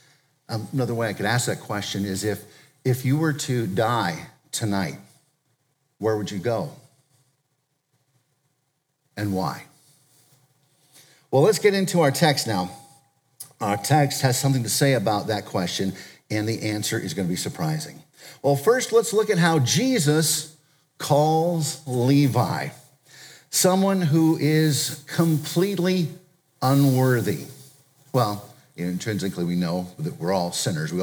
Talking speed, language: 130 wpm, English